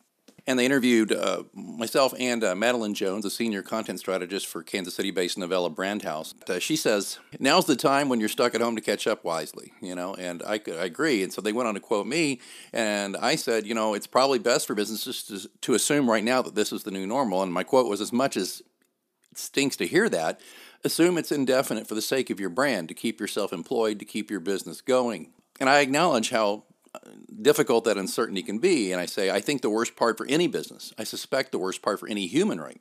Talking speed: 230 wpm